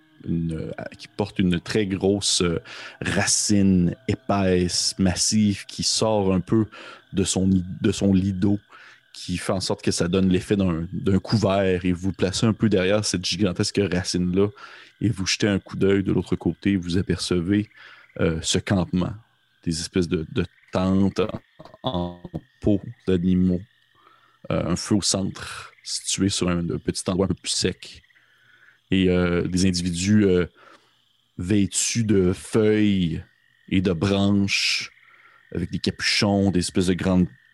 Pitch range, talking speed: 90-105 Hz, 150 wpm